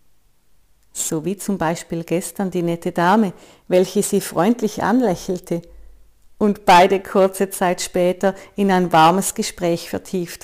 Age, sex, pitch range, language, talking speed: 50-69, female, 165-210 Hz, German, 125 wpm